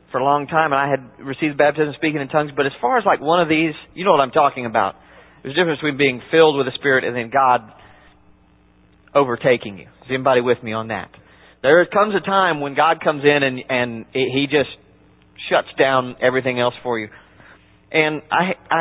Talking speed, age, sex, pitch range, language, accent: 215 wpm, 40-59, male, 120-155 Hz, English, American